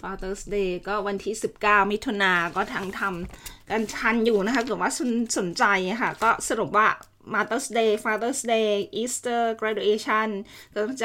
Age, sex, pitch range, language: 20-39, female, 190-225 Hz, Thai